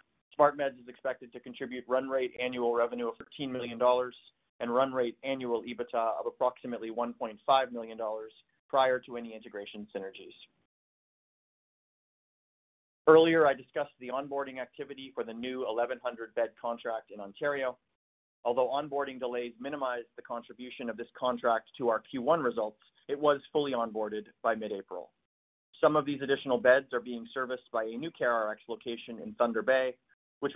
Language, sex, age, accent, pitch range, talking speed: English, male, 30-49, American, 115-135 Hz, 150 wpm